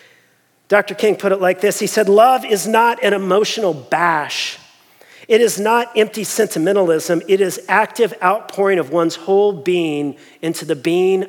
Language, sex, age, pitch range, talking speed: English, male, 40-59, 165-205 Hz, 160 wpm